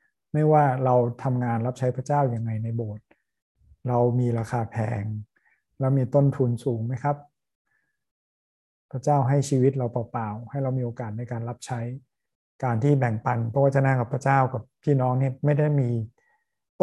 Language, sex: Thai, male